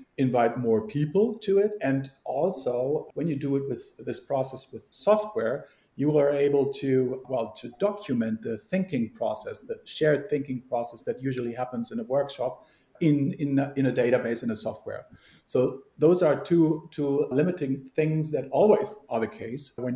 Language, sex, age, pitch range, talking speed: English, male, 50-69, 130-160 Hz, 175 wpm